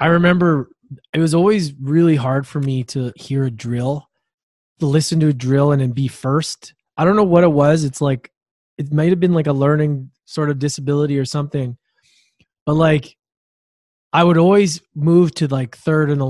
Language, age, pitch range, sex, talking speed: English, 20-39, 135-170 Hz, male, 190 wpm